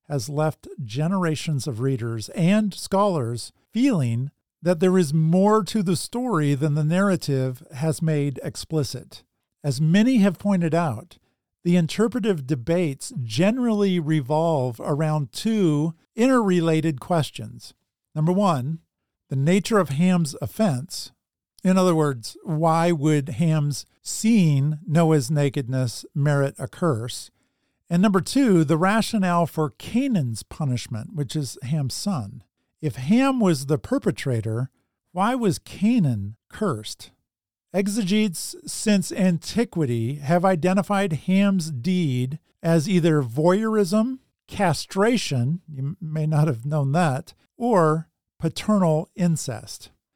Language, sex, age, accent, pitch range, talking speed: English, male, 50-69, American, 140-190 Hz, 115 wpm